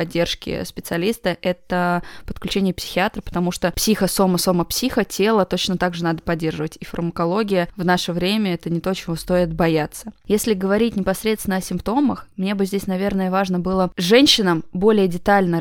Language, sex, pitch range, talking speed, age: Russian, female, 170-200 Hz, 165 wpm, 20-39